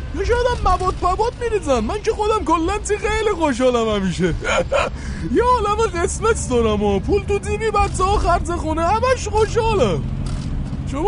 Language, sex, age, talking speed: Persian, male, 20-39, 145 wpm